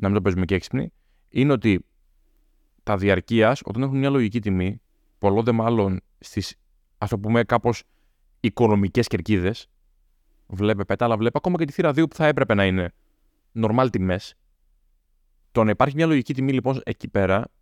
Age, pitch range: 20-39, 95-145 Hz